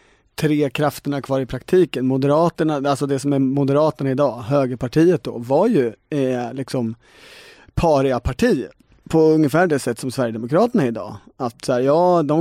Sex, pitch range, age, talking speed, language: male, 130-160 Hz, 30-49, 155 wpm, Swedish